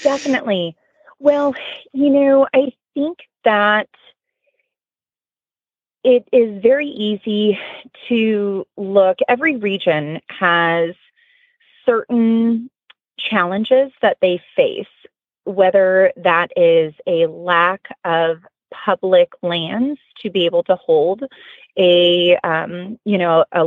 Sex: female